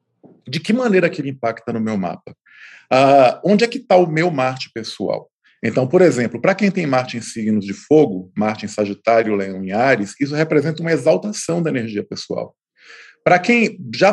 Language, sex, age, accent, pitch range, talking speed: Portuguese, male, 40-59, Brazilian, 130-180 Hz, 185 wpm